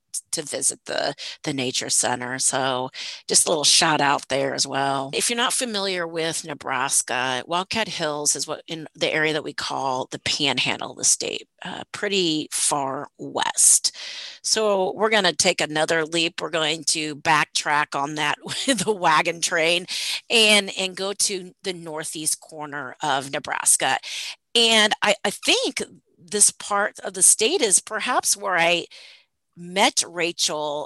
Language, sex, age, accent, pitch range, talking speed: English, female, 30-49, American, 155-215 Hz, 160 wpm